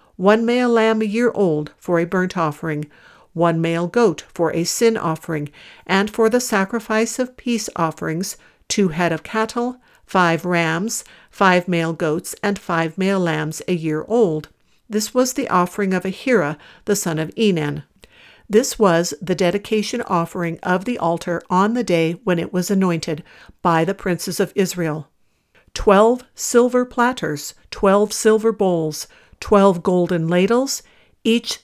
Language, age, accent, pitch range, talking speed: English, 60-79, American, 170-215 Hz, 150 wpm